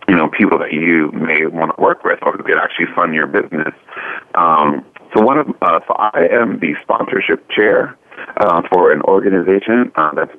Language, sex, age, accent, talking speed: English, male, 30-49, American, 190 wpm